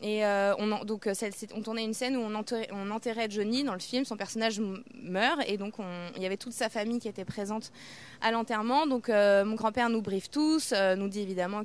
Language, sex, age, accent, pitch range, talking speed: French, female, 20-39, French, 205-250 Hz, 230 wpm